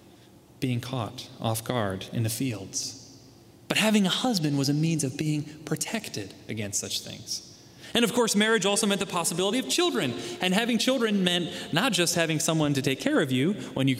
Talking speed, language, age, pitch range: 195 wpm, English, 20-39, 115-150 Hz